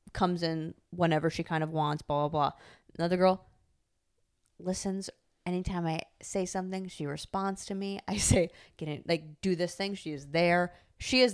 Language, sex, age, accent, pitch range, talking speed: English, female, 20-39, American, 150-175 Hz, 180 wpm